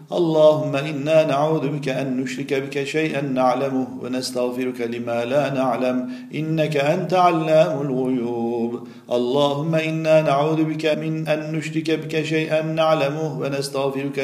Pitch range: 130-160 Hz